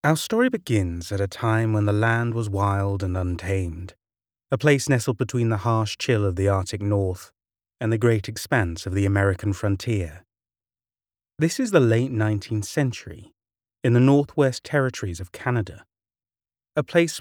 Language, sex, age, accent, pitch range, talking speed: English, male, 30-49, British, 95-125 Hz, 160 wpm